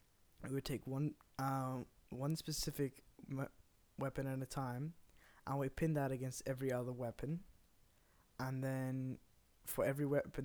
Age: 20-39